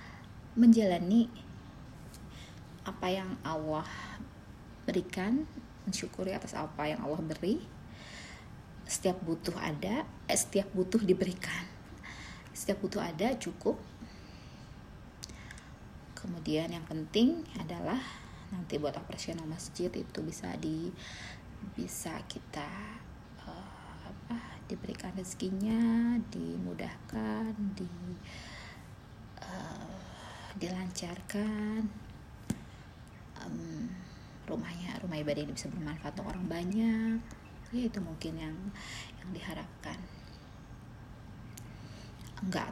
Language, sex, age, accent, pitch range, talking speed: Indonesian, female, 20-39, native, 155-210 Hz, 85 wpm